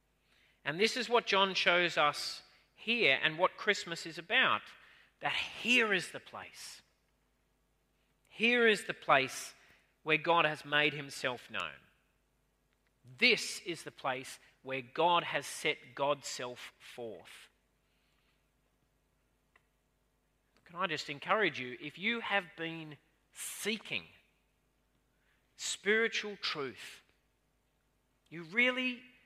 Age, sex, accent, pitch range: 40-59, male, Australian, 135-195 Hz